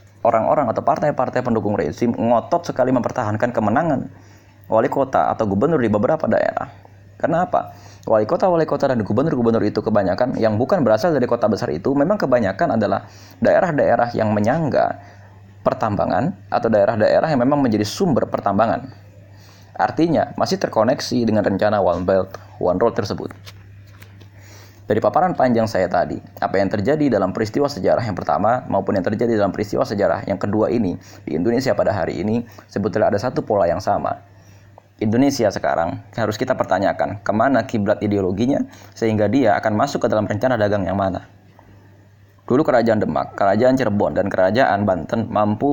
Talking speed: 150 wpm